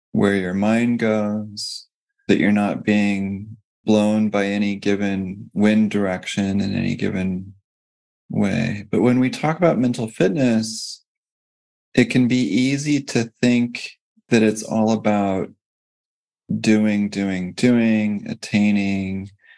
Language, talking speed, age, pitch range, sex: English, 120 wpm, 20-39, 100-115 Hz, male